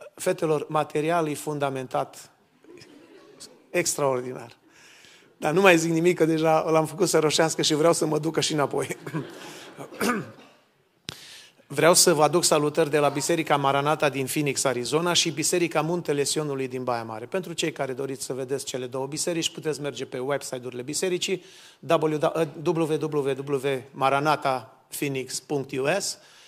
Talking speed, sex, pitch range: 130 wpm, male, 135-165 Hz